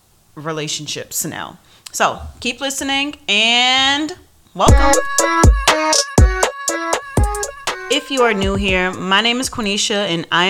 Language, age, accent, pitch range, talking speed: English, 30-49, American, 155-220 Hz, 105 wpm